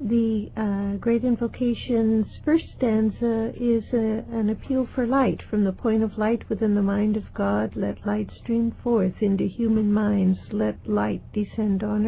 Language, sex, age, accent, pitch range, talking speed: English, female, 60-79, American, 205-240 Hz, 160 wpm